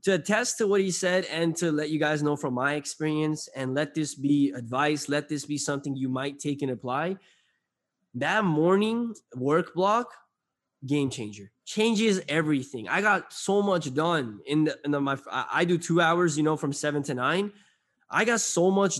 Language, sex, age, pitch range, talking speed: English, male, 20-39, 140-175 Hz, 195 wpm